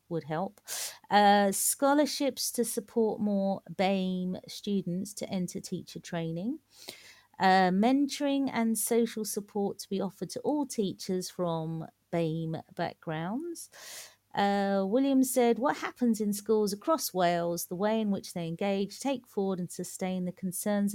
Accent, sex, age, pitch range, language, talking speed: British, female, 50-69, 165-210 Hz, English, 140 wpm